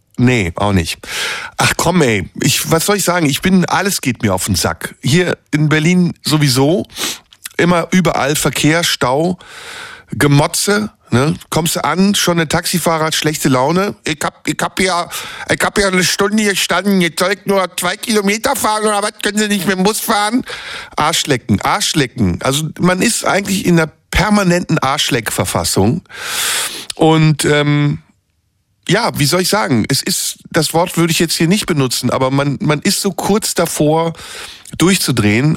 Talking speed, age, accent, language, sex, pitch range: 165 wpm, 50-69, German, German, male, 125-175 Hz